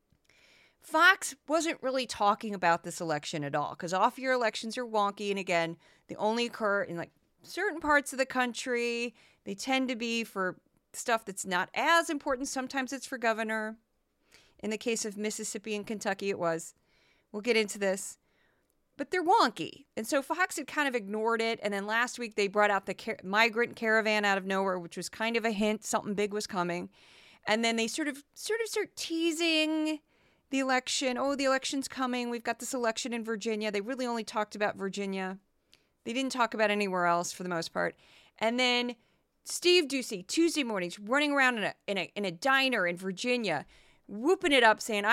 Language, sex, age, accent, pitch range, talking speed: English, female, 30-49, American, 205-275 Hz, 195 wpm